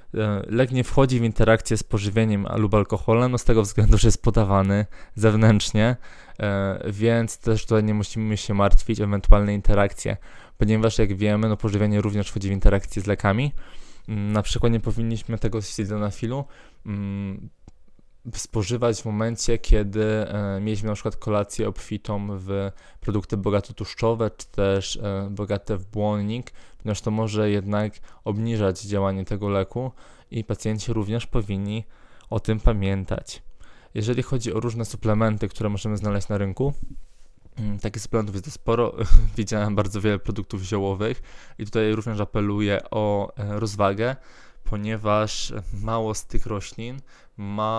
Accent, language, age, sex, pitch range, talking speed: native, Polish, 20-39, male, 100-115 Hz, 135 wpm